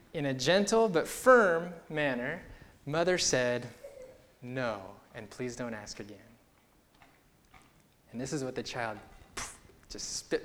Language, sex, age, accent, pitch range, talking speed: English, male, 20-39, American, 125-185 Hz, 125 wpm